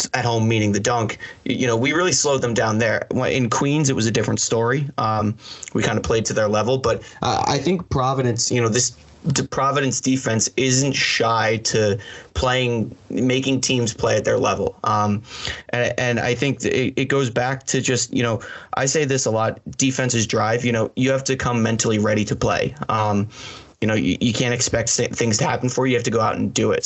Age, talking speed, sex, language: 30-49, 220 wpm, male, English